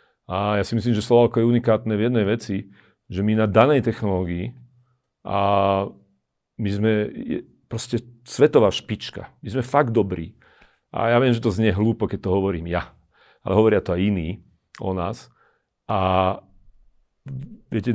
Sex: male